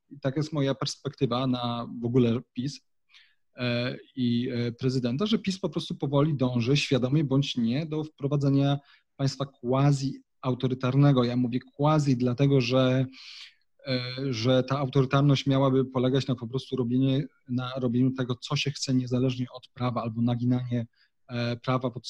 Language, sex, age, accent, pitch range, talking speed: Polish, male, 30-49, native, 125-140 Hz, 135 wpm